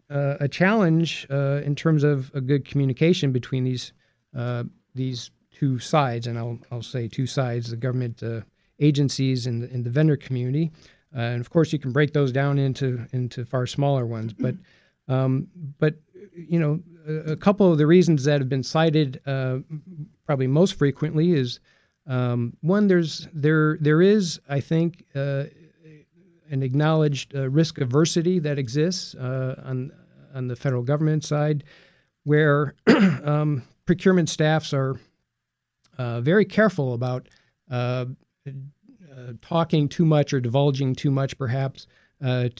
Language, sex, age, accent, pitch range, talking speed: English, male, 40-59, American, 130-155 Hz, 150 wpm